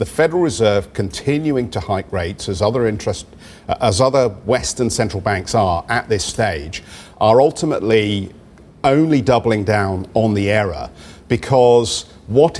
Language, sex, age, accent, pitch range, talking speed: English, male, 50-69, British, 100-120 Hz, 145 wpm